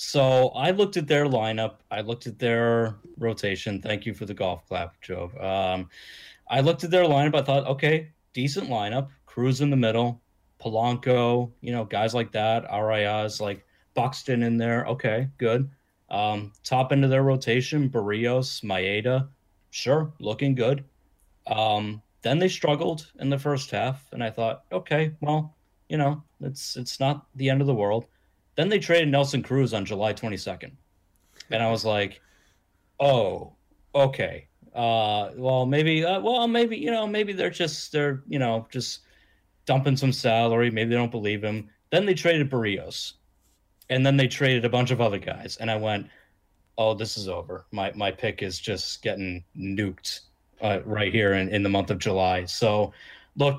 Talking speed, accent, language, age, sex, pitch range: 175 wpm, American, English, 30-49, male, 105-140 Hz